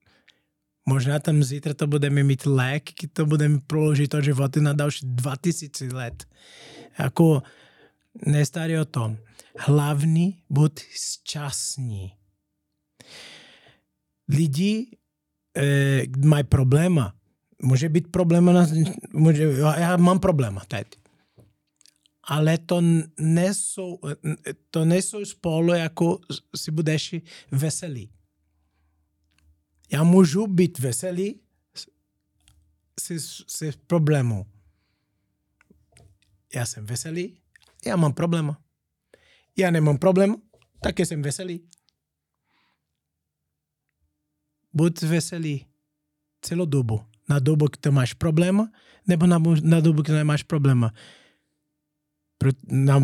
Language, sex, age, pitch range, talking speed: Czech, male, 20-39, 130-170 Hz, 90 wpm